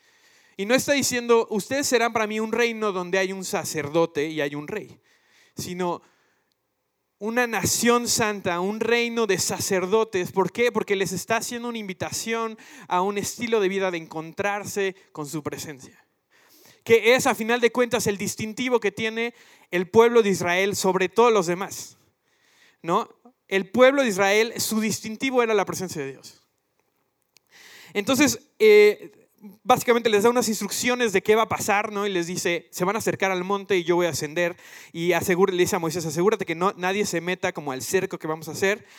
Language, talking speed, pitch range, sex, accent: Spanish, 180 wpm, 180-230 Hz, male, Mexican